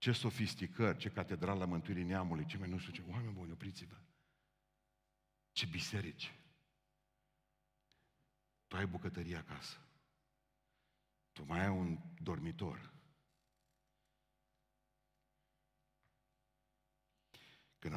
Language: Romanian